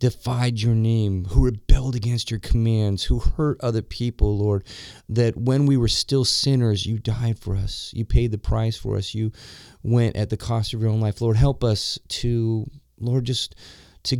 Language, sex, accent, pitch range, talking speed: English, male, American, 105-125 Hz, 190 wpm